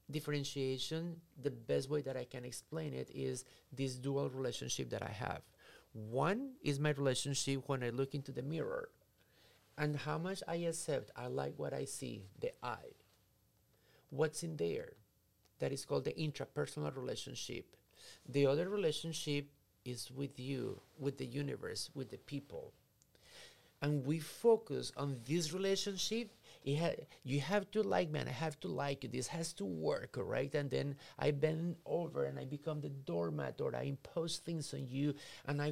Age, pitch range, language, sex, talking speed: 50-69, 130-160 Hz, English, male, 165 wpm